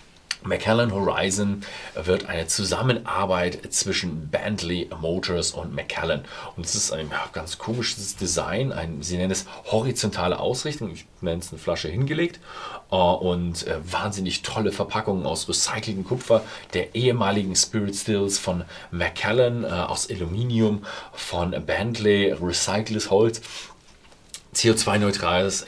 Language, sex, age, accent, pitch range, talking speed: German, male, 40-59, German, 90-115 Hz, 115 wpm